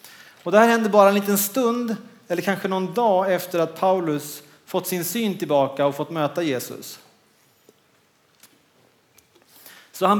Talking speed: 145 wpm